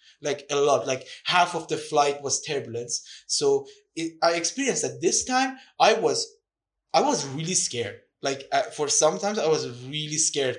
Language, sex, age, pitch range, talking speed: English, male, 20-39, 130-170 Hz, 165 wpm